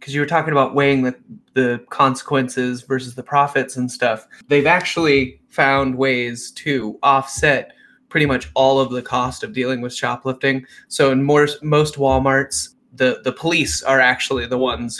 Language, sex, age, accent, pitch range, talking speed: English, male, 20-39, American, 125-140 Hz, 170 wpm